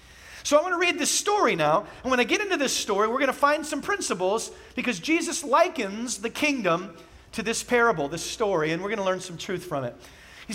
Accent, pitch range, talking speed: American, 185-250 Hz, 235 wpm